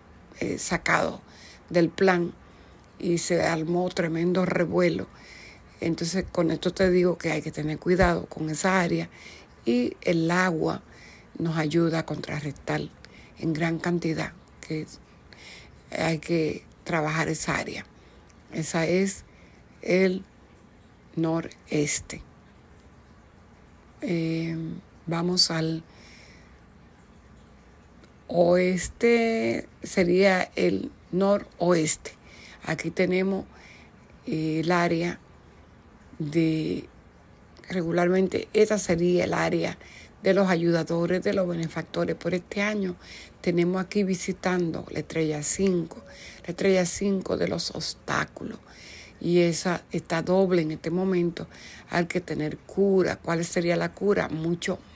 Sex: female